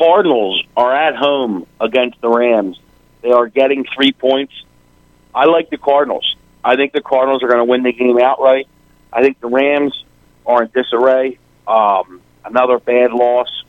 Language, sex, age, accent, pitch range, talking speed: English, male, 50-69, American, 120-135 Hz, 165 wpm